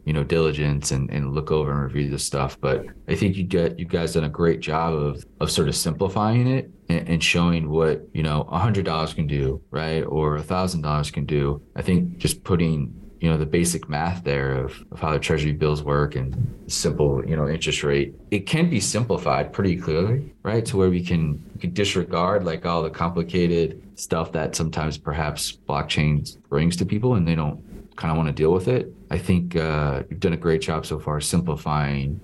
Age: 30-49